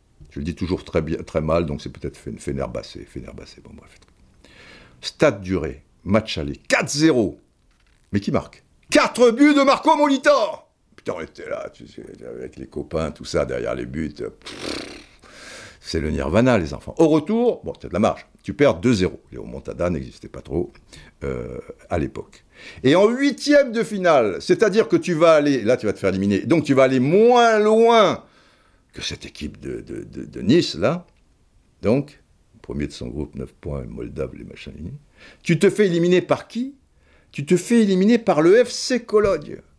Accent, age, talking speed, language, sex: French, 60-79, 180 wpm, French, male